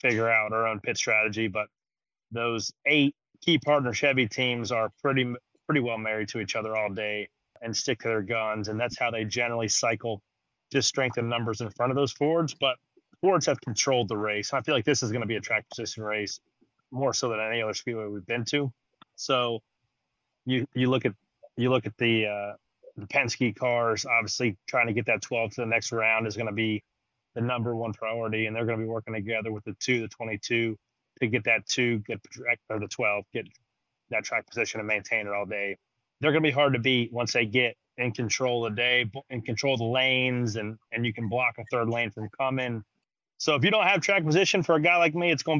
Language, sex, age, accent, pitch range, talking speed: English, male, 30-49, American, 110-125 Hz, 230 wpm